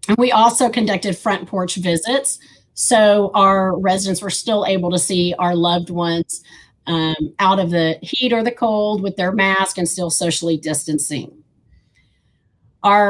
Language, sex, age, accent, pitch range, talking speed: English, female, 40-59, American, 180-230 Hz, 155 wpm